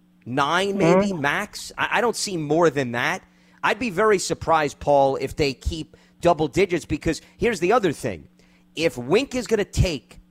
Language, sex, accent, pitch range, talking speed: English, male, American, 145-190 Hz, 175 wpm